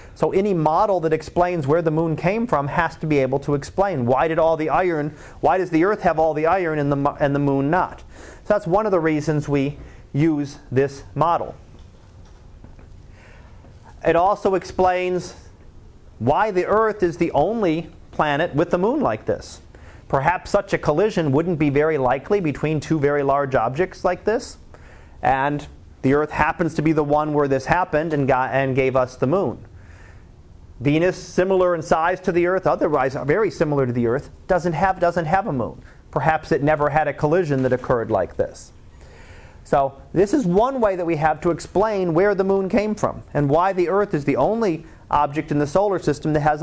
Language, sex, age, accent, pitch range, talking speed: English, male, 40-59, American, 135-180 Hz, 195 wpm